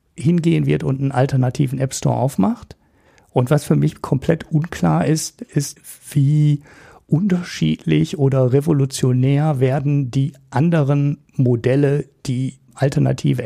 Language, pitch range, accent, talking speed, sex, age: German, 125-150 Hz, German, 110 wpm, male, 50-69